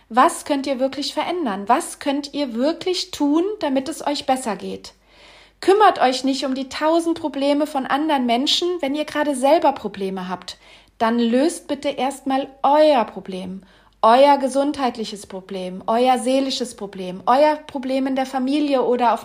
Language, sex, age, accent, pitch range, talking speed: German, female, 40-59, German, 235-295 Hz, 155 wpm